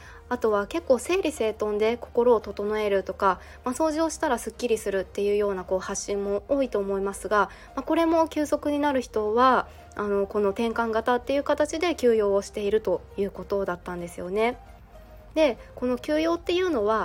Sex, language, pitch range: female, Japanese, 205-260 Hz